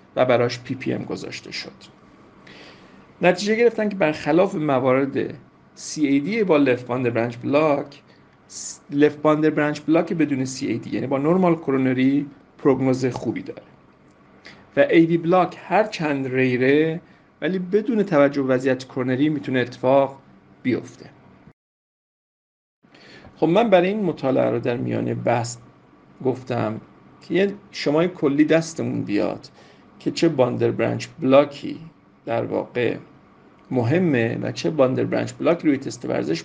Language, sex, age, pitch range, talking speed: Persian, male, 50-69, 125-165 Hz, 130 wpm